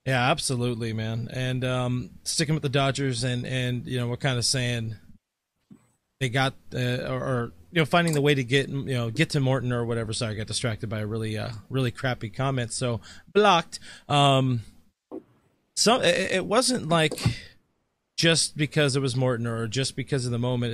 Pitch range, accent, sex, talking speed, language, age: 120-140 Hz, American, male, 190 wpm, English, 30-49